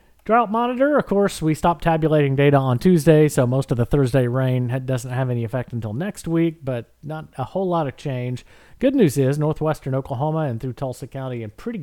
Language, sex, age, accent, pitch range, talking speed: English, male, 40-59, American, 120-155 Hz, 210 wpm